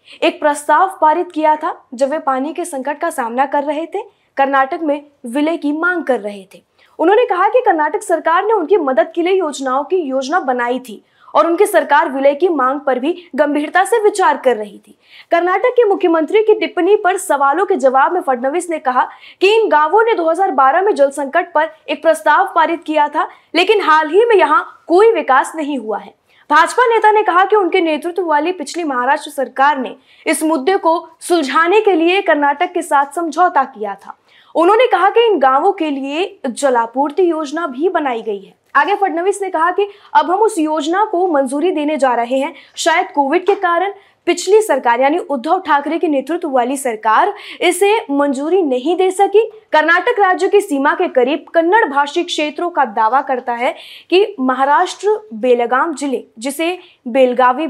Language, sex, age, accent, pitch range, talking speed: Hindi, female, 20-39, native, 275-370 Hz, 185 wpm